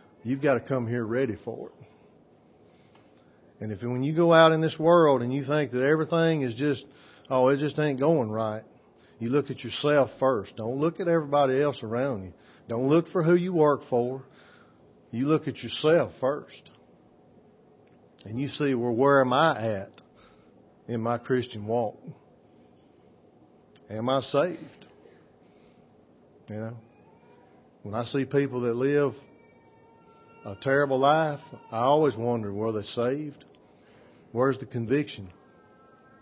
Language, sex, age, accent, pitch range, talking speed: English, male, 40-59, American, 110-140 Hz, 145 wpm